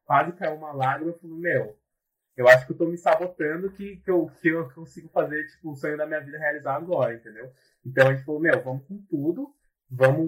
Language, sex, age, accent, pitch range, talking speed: Portuguese, male, 20-39, Brazilian, 125-160 Hz, 230 wpm